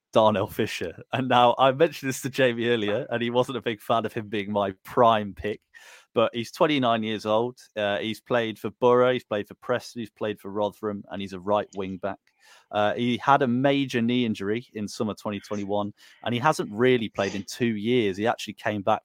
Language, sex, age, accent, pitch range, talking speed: English, male, 30-49, British, 105-120 Hz, 215 wpm